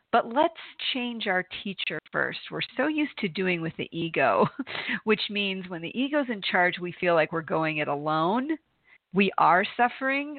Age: 40-59